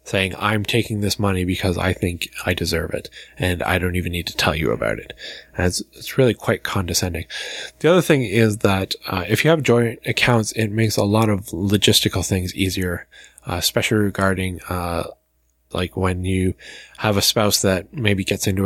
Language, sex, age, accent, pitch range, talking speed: English, male, 20-39, American, 90-105 Hz, 195 wpm